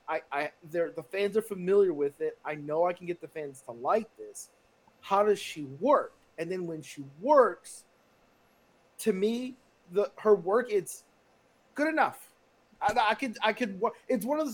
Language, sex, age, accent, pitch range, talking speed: English, male, 30-49, American, 175-255 Hz, 185 wpm